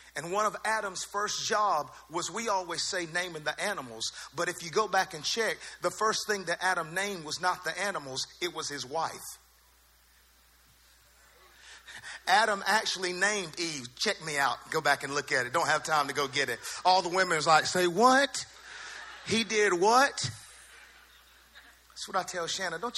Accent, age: American, 40-59